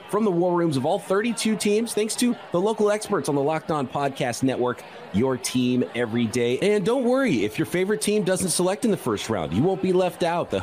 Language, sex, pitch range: English, male, 120-180 Hz